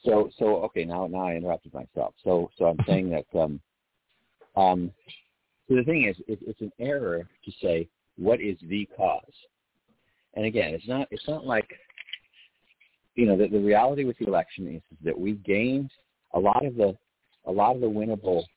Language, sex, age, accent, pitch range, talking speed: English, male, 50-69, American, 90-110 Hz, 185 wpm